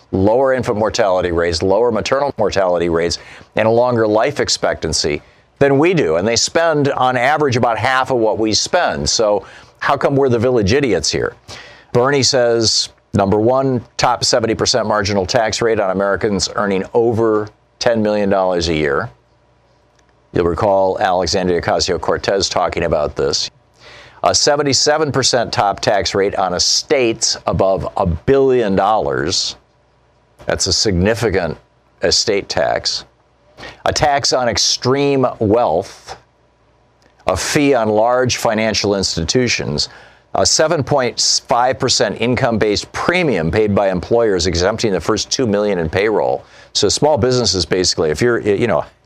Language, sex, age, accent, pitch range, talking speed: English, male, 50-69, American, 95-125 Hz, 130 wpm